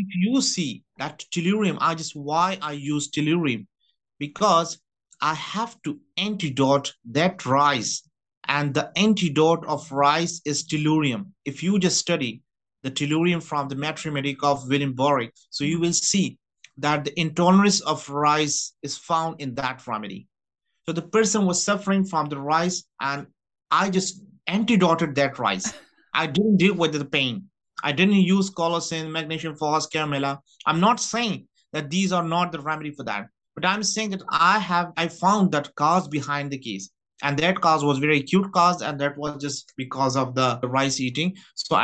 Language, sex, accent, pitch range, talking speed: English, male, Indian, 140-175 Hz, 170 wpm